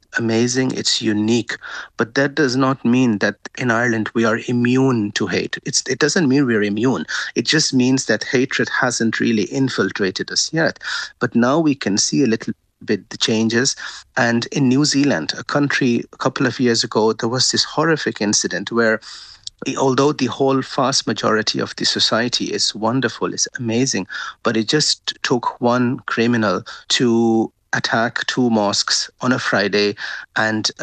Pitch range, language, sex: 110-130 Hz, English, male